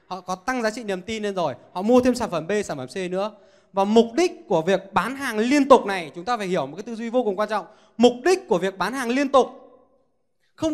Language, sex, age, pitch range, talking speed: Vietnamese, male, 20-39, 185-255 Hz, 280 wpm